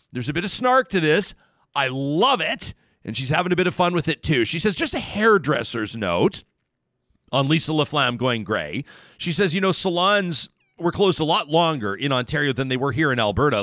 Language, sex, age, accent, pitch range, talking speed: English, male, 40-59, American, 135-185 Hz, 215 wpm